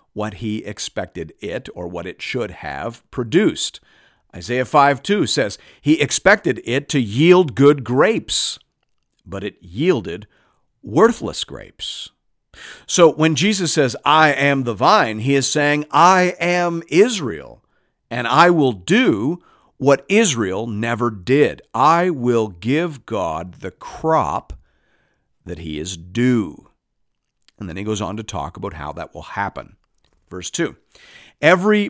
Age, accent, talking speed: 50-69, American, 135 wpm